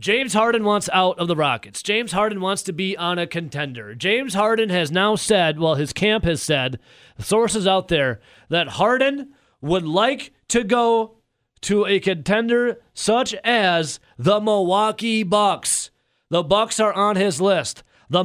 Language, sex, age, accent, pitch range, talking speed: English, male, 30-49, American, 155-210 Hz, 160 wpm